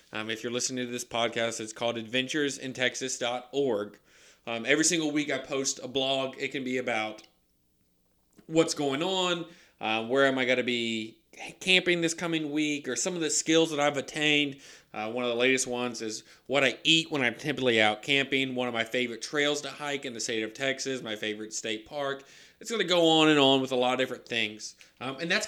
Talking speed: 210 wpm